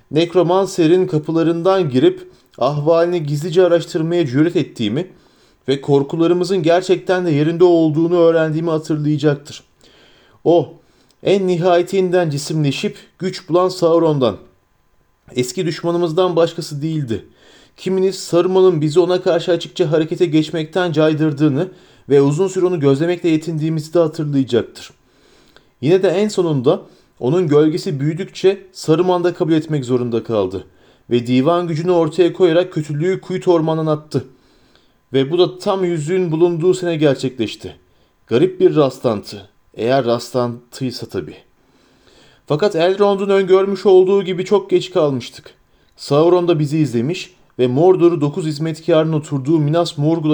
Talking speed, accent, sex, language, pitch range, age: 115 wpm, native, male, Turkish, 145-180 Hz, 40-59